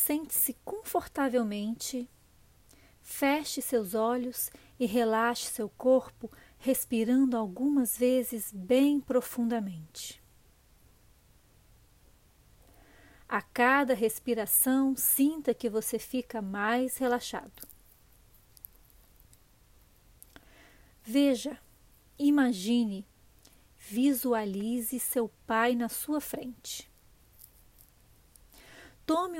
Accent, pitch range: Brazilian, 225-270 Hz